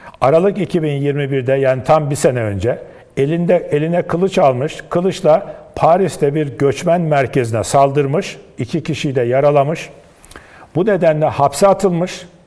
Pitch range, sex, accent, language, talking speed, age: 130-175 Hz, male, native, Turkish, 120 wpm, 50-69